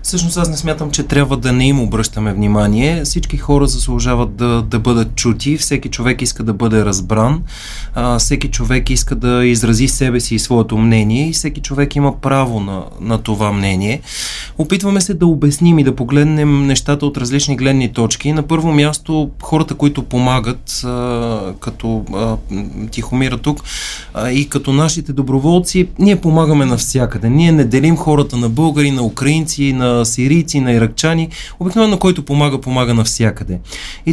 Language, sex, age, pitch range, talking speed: Bulgarian, male, 30-49, 120-150 Hz, 165 wpm